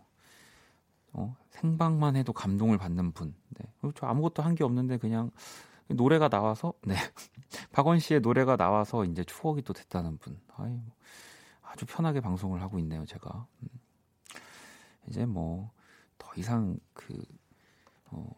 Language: Korean